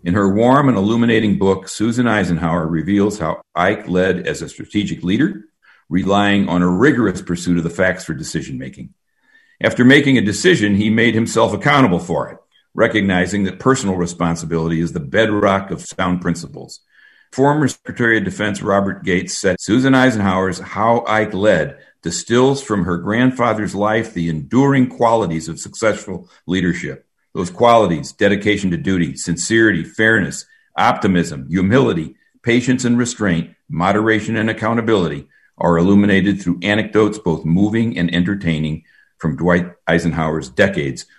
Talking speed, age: 140 wpm, 60-79